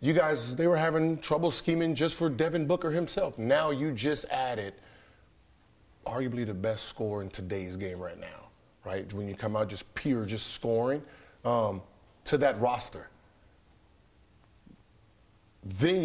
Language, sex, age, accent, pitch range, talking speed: English, male, 40-59, American, 105-140 Hz, 145 wpm